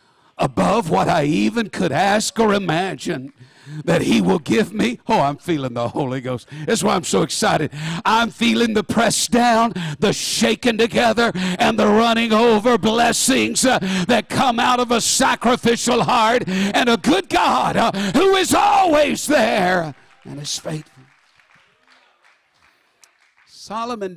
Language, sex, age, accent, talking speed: English, male, 60-79, American, 145 wpm